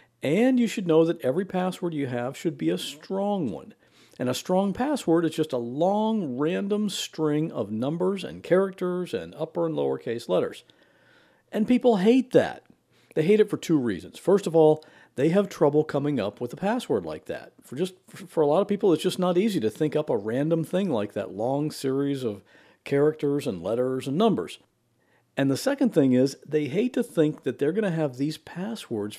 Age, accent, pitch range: 50-69, American, 140-195 Hz